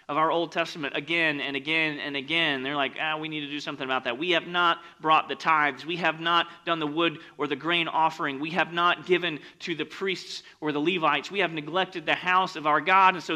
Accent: American